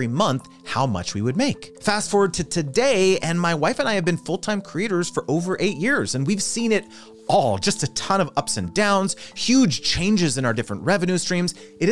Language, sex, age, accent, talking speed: English, male, 30-49, American, 215 wpm